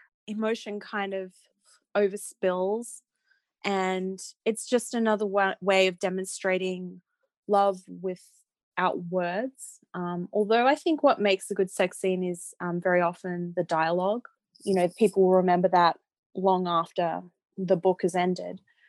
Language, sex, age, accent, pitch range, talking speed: English, female, 20-39, Australian, 185-220 Hz, 135 wpm